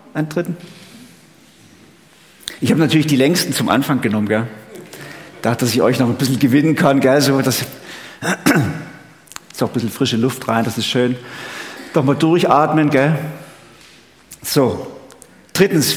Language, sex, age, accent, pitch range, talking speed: German, male, 50-69, German, 135-170 Hz, 145 wpm